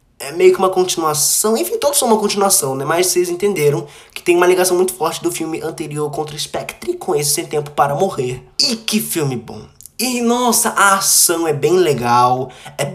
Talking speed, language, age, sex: 205 wpm, Portuguese, 20-39, male